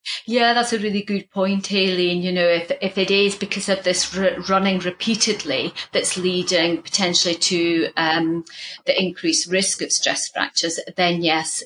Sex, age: female, 30-49